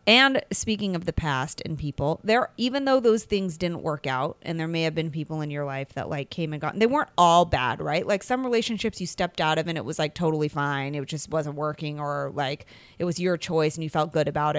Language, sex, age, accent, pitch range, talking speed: English, female, 30-49, American, 155-220 Hz, 255 wpm